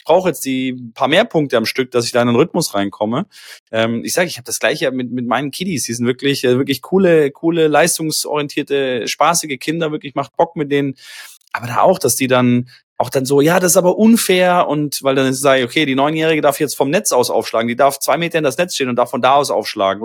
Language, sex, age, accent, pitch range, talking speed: German, male, 30-49, German, 130-170 Hz, 250 wpm